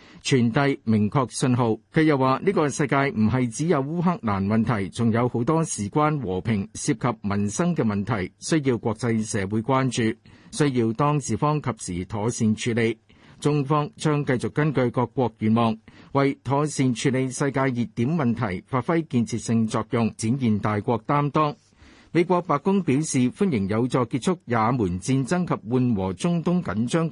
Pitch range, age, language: 110-145 Hz, 50-69, Chinese